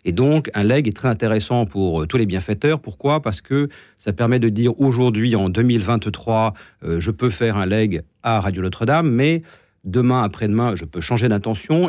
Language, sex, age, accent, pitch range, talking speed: French, male, 40-59, French, 95-130 Hz, 190 wpm